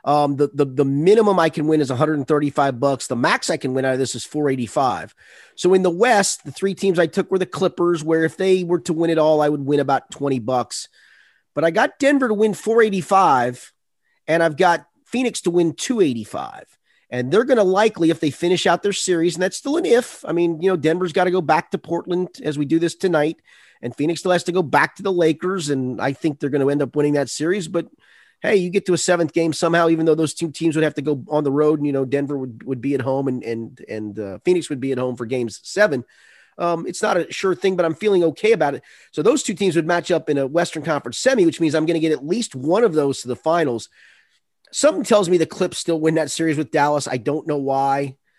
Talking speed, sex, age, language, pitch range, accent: 260 wpm, male, 30-49, English, 140-180 Hz, American